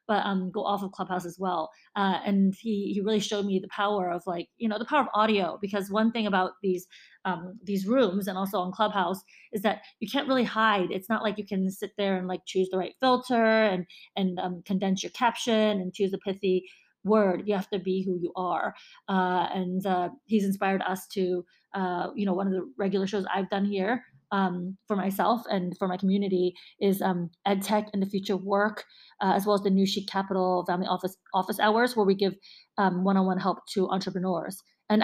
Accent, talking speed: American, 220 wpm